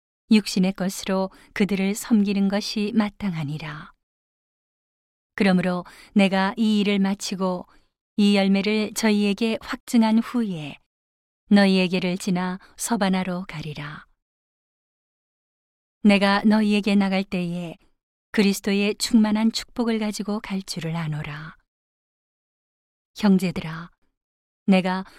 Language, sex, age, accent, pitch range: Korean, female, 40-59, native, 185-215 Hz